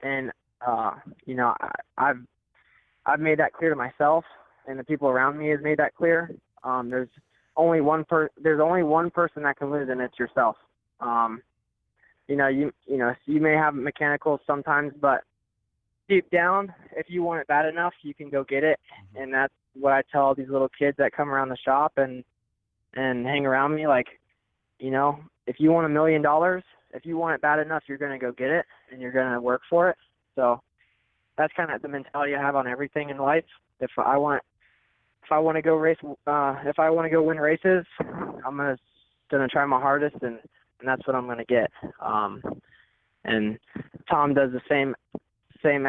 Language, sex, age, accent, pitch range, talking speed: English, male, 20-39, American, 125-155 Hz, 205 wpm